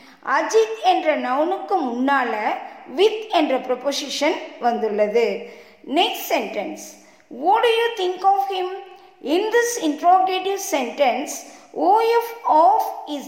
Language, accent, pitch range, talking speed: Tamil, native, 275-380 Hz, 110 wpm